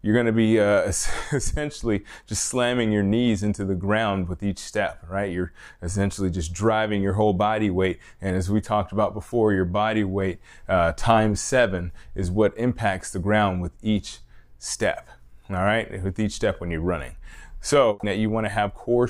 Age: 20-39